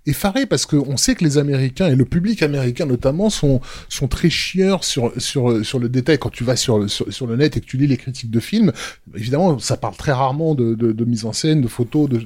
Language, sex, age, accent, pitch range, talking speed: French, male, 20-39, French, 125-150 Hz, 255 wpm